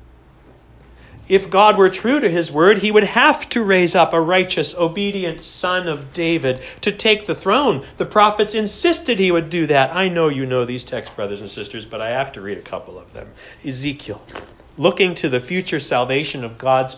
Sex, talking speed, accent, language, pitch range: male, 200 wpm, American, English, 125-175 Hz